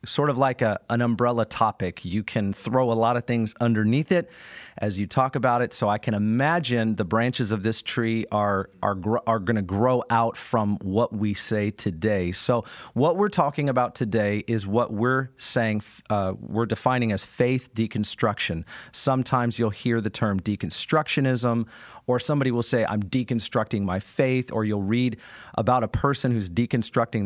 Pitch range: 110-130 Hz